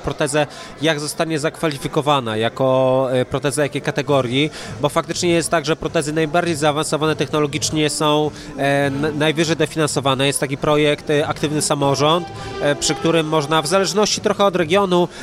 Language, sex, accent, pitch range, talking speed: Polish, male, native, 150-185 Hz, 140 wpm